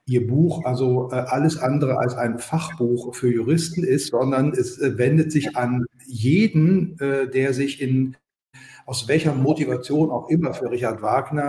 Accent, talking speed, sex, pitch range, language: German, 160 wpm, male, 125-145 Hz, German